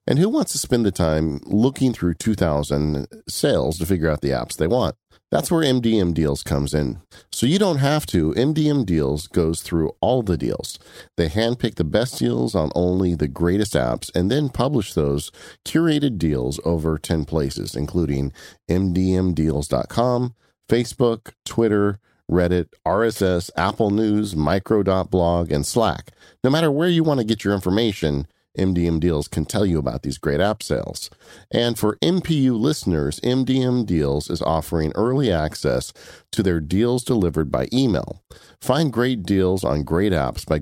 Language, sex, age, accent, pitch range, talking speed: English, male, 40-59, American, 80-120 Hz, 160 wpm